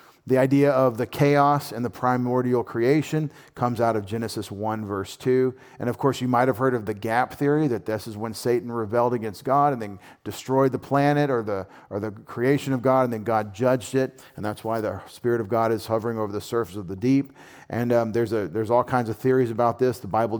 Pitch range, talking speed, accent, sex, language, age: 110-135 Hz, 235 wpm, American, male, English, 40-59